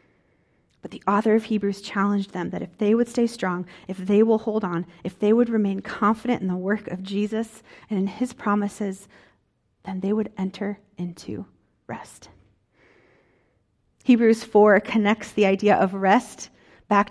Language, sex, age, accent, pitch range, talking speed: English, female, 40-59, American, 190-220 Hz, 160 wpm